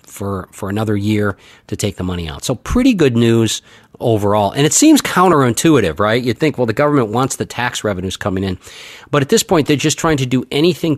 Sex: male